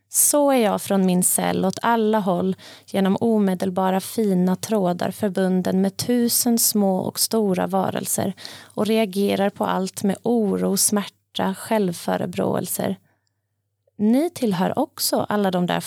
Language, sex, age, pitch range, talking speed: Swedish, female, 30-49, 185-220 Hz, 130 wpm